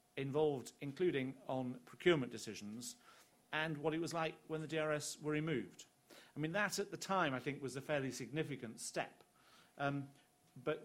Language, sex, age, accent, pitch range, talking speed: English, male, 40-59, British, 125-155 Hz, 165 wpm